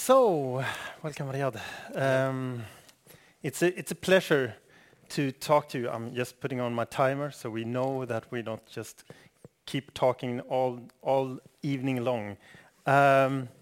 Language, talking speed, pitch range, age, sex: English, 140 wpm, 120-150 Hz, 30-49, male